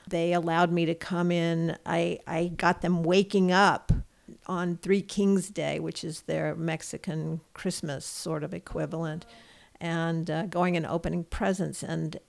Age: 50-69